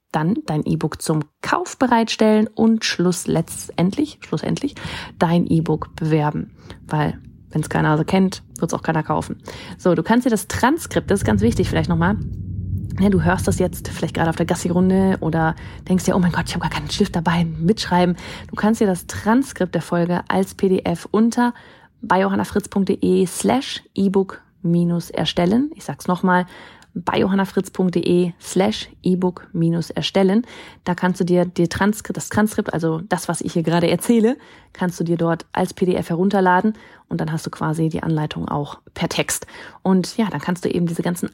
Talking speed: 180 wpm